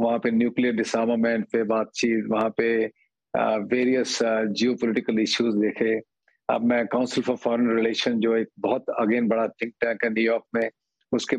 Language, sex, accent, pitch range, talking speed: English, male, Indian, 115-145 Hz, 150 wpm